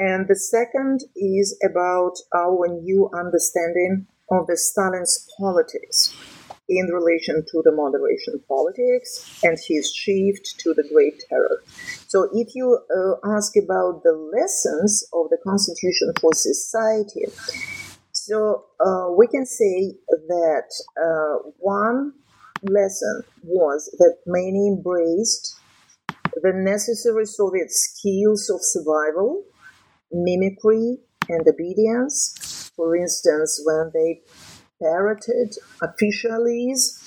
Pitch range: 180-245 Hz